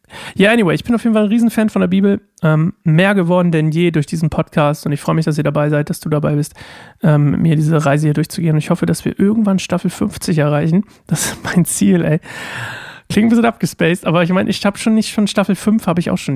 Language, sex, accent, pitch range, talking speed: German, male, German, 155-185 Hz, 260 wpm